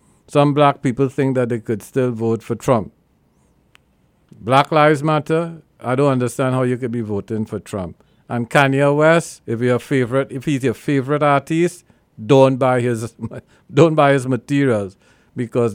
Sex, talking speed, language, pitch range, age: male, 165 wpm, English, 120-140 Hz, 50-69